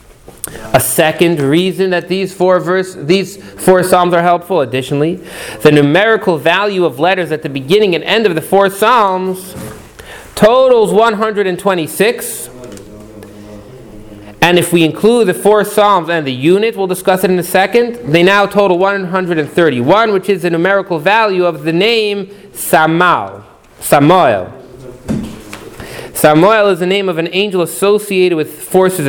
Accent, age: American, 30-49